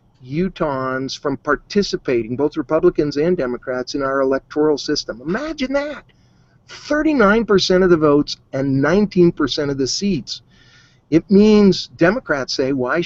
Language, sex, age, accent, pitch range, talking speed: English, male, 50-69, American, 135-180 Hz, 125 wpm